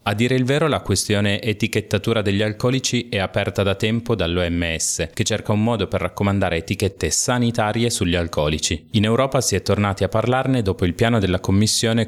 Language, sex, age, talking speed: Italian, male, 30-49, 180 wpm